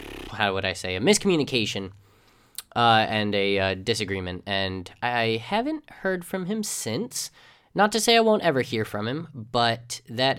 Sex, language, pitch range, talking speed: male, English, 100-145 Hz, 170 wpm